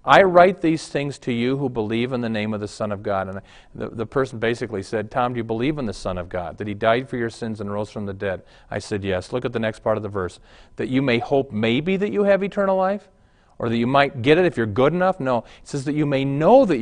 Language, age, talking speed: English, 40-59, 290 wpm